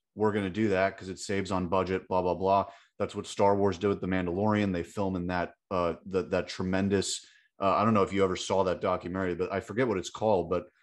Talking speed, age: 255 wpm, 30-49